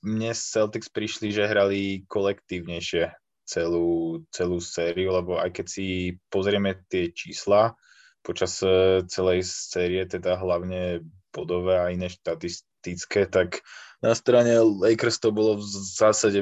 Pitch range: 85-95 Hz